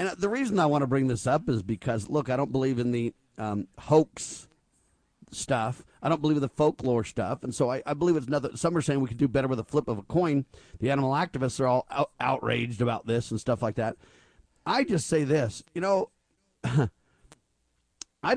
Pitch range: 125-170 Hz